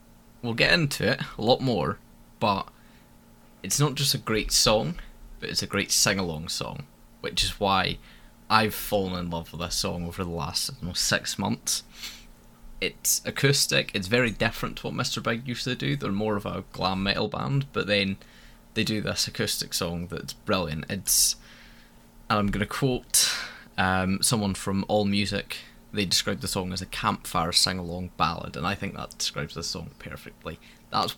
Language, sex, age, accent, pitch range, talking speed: English, male, 10-29, British, 85-110 Hz, 180 wpm